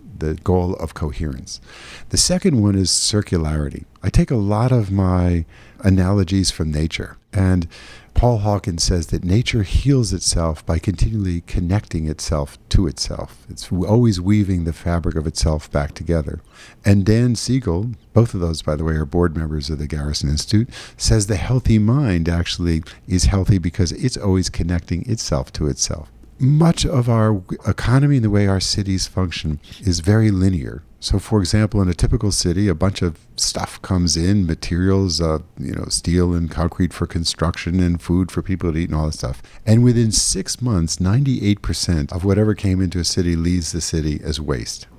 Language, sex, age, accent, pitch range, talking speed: English, male, 50-69, American, 85-105 Hz, 175 wpm